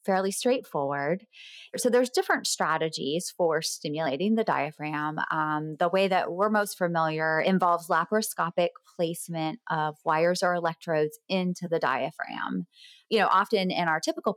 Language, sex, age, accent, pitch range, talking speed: English, female, 20-39, American, 155-195 Hz, 140 wpm